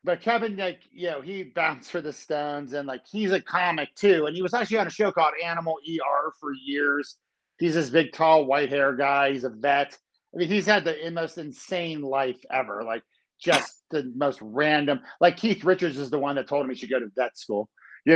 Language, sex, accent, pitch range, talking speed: English, male, American, 130-165 Hz, 225 wpm